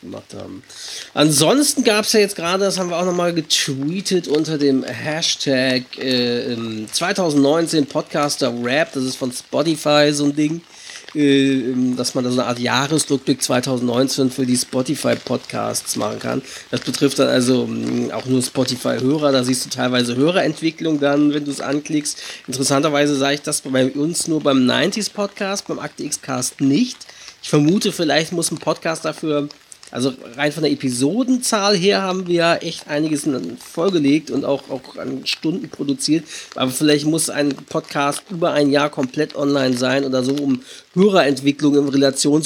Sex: male